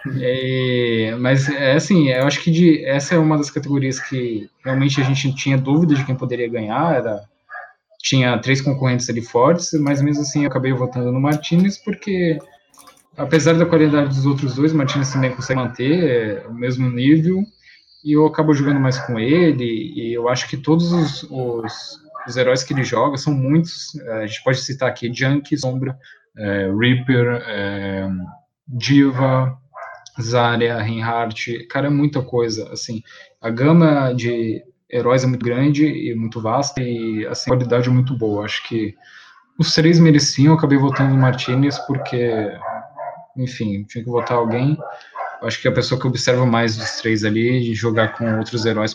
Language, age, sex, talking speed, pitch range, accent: Portuguese, 20-39, male, 165 wpm, 115-145 Hz, Brazilian